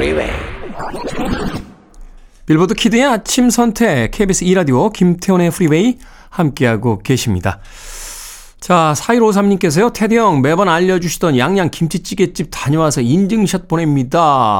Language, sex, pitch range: Korean, male, 115-185 Hz